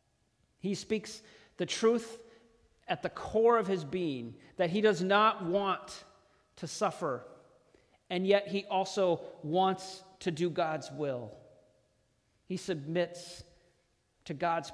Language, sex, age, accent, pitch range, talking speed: English, male, 40-59, American, 145-195 Hz, 120 wpm